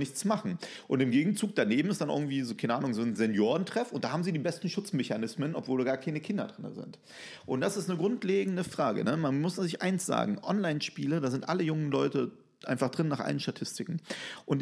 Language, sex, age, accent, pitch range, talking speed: German, male, 30-49, German, 125-175 Hz, 220 wpm